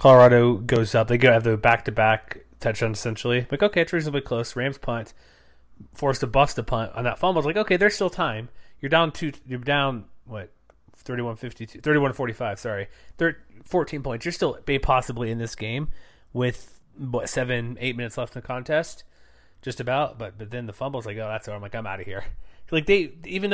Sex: male